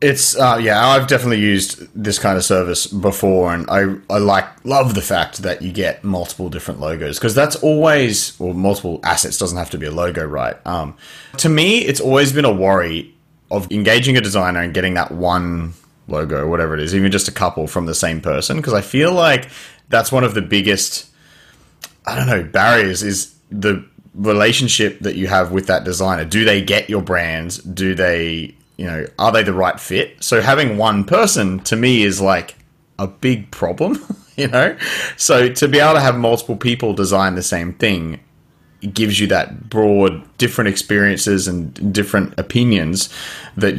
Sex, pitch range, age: male, 90-120 Hz, 20-39